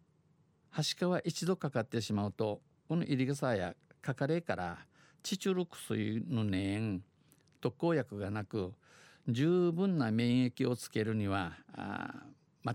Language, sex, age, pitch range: Japanese, male, 50-69, 115-160 Hz